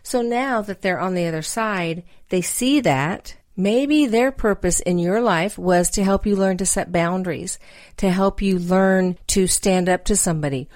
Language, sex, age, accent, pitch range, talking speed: English, female, 50-69, American, 160-200 Hz, 190 wpm